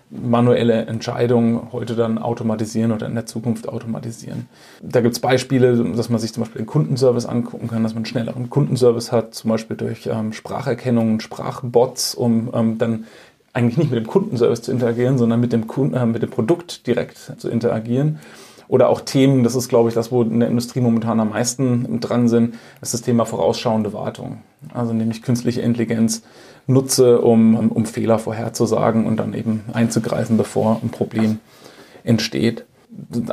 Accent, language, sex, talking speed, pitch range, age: German, German, male, 175 wpm, 115-130 Hz, 30-49